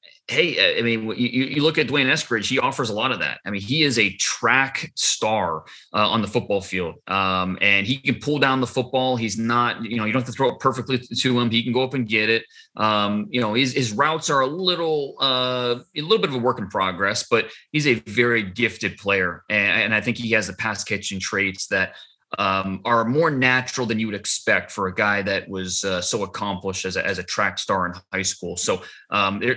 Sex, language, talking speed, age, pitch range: male, English, 235 wpm, 30-49, 105-130 Hz